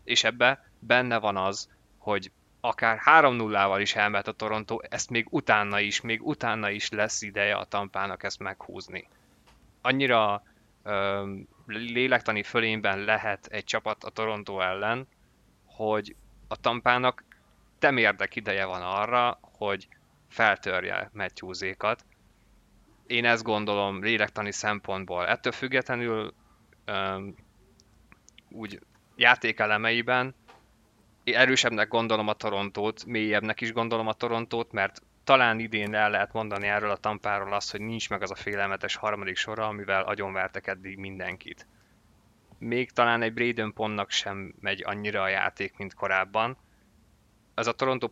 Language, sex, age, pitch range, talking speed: Hungarian, male, 20-39, 100-115 Hz, 130 wpm